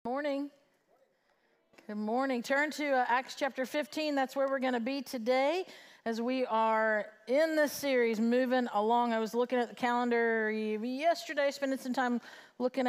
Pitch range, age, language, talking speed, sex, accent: 215-270 Hz, 40-59, English, 165 wpm, female, American